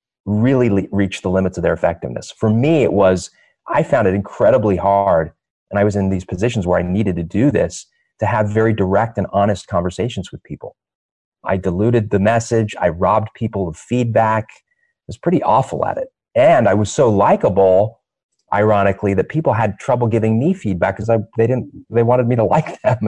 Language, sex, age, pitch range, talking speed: English, male, 30-49, 95-125 Hz, 190 wpm